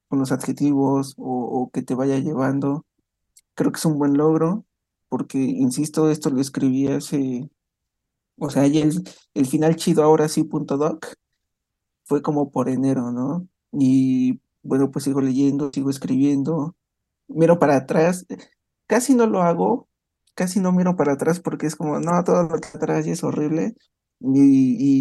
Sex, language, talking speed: male, Spanish, 165 wpm